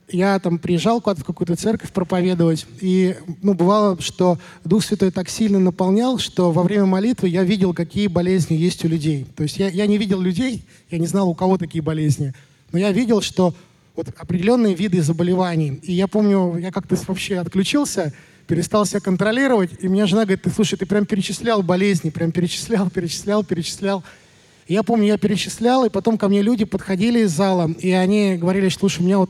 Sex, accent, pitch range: male, native, 175-205 Hz